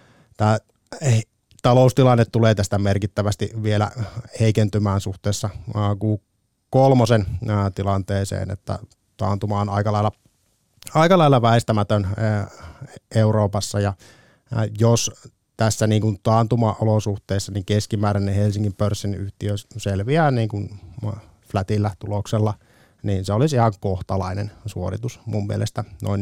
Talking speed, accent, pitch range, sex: 95 wpm, native, 100-115 Hz, male